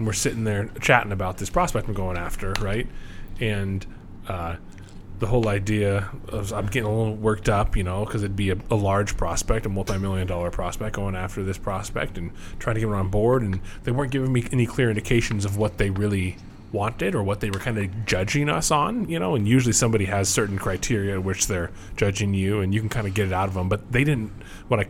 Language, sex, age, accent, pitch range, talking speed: English, male, 20-39, American, 95-115 Hz, 235 wpm